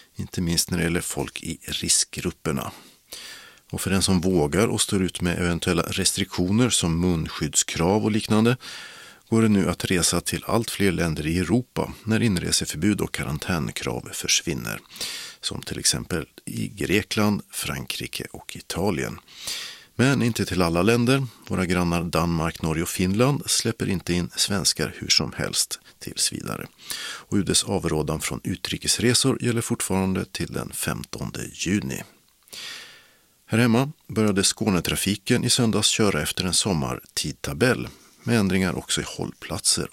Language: Swedish